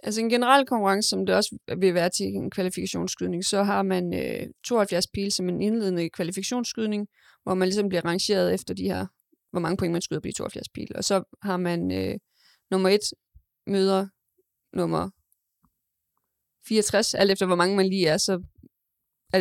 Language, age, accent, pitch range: Danish, 20-39, native, 175-200 Hz